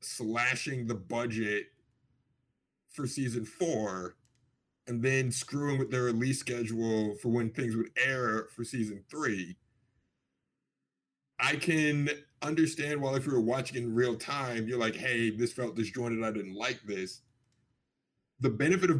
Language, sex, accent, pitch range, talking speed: English, male, American, 115-135 Hz, 145 wpm